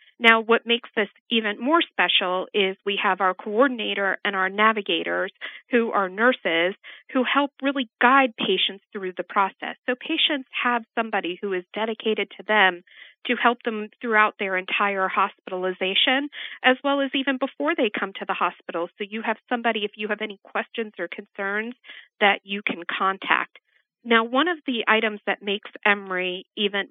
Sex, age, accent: female, 40-59, American